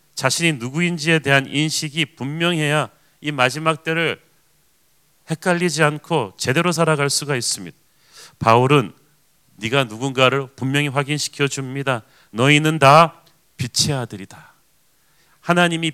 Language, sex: Korean, male